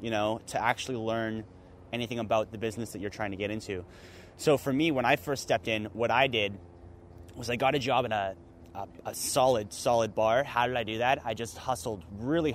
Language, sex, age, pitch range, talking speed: English, male, 20-39, 105-140 Hz, 225 wpm